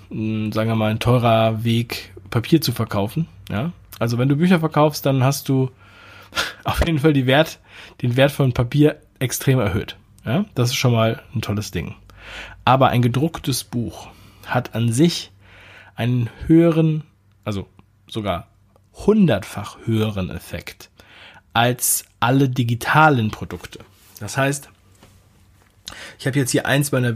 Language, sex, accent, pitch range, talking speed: German, male, German, 100-130 Hz, 140 wpm